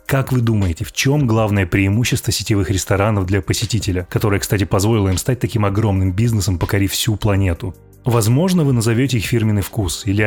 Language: Russian